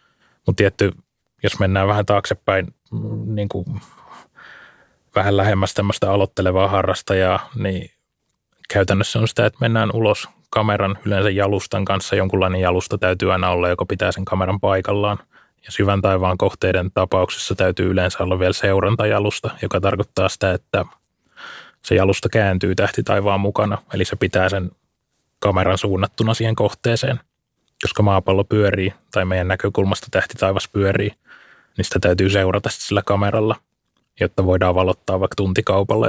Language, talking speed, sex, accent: Finnish, 135 wpm, male, native